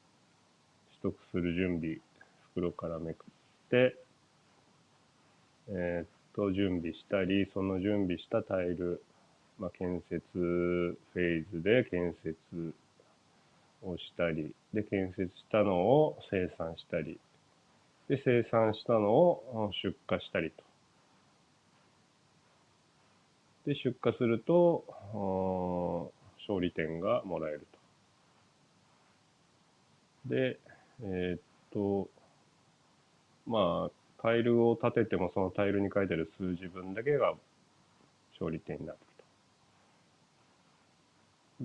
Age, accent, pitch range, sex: 40-59, native, 85-105 Hz, male